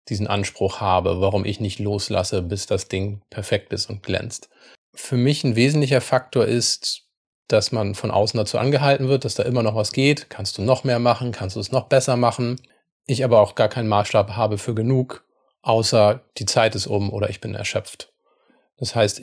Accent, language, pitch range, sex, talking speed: German, German, 105-120 Hz, male, 200 wpm